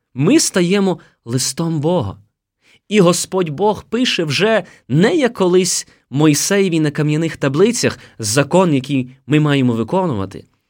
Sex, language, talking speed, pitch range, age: male, Ukrainian, 120 wpm, 115-175 Hz, 20-39